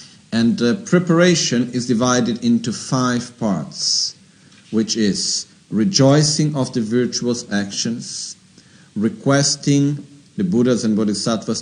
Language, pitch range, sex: Italian, 110-145 Hz, male